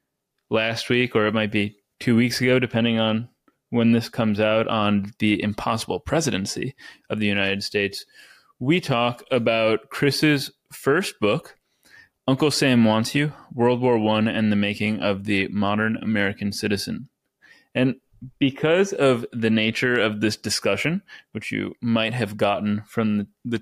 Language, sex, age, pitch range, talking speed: English, male, 20-39, 105-125 Hz, 150 wpm